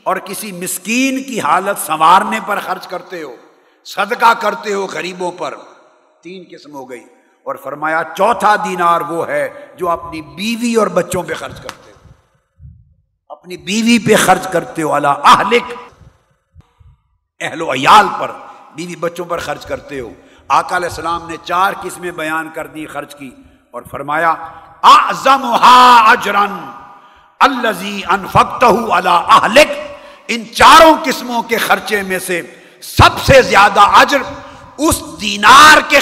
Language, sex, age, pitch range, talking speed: Urdu, male, 50-69, 165-230 Hz, 135 wpm